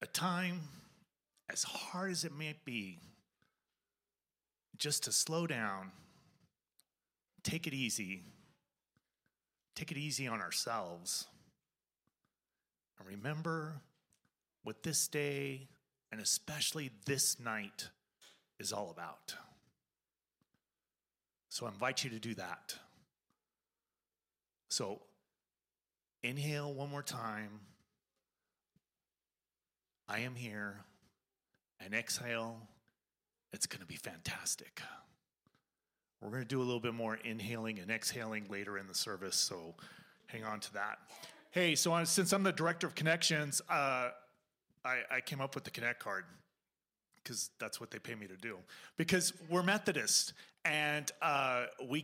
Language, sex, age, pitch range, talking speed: English, male, 30-49, 115-160 Hz, 120 wpm